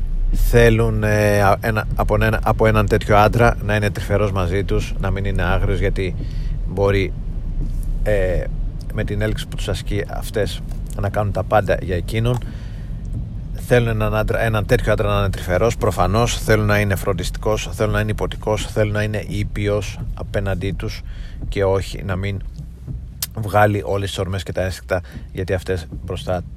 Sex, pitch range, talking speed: male, 95-110 Hz, 160 wpm